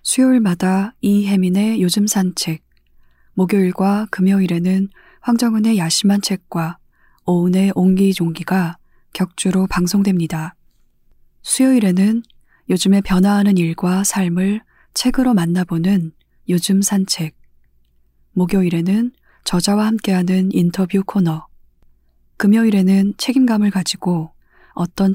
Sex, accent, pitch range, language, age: female, native, 175-205 Hz, Korean, 20-39